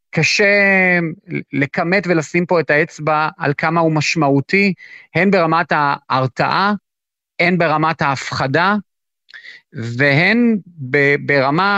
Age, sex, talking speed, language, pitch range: 30-49, male, 95 wpm, Hebrew, 140-185 Hz